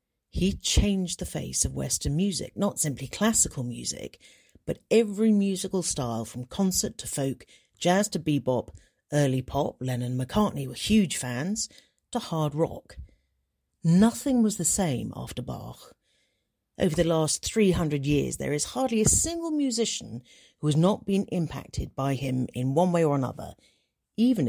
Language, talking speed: English, 155 wpm